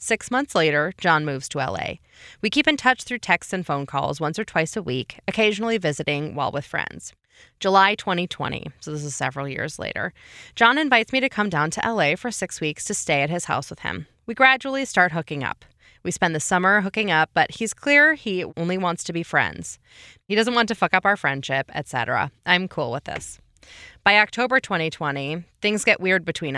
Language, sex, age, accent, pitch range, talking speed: English, female, 20-39, American, 150-210 Hz, 210 wpm